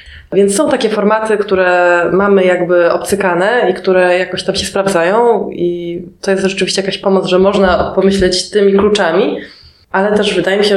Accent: native